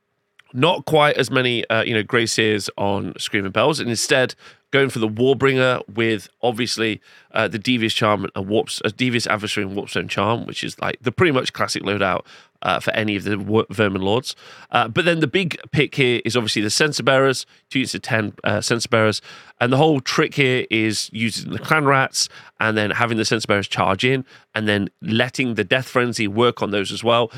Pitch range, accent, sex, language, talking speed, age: 110-135 Hz, British, male, English, 210 wpm, 30-49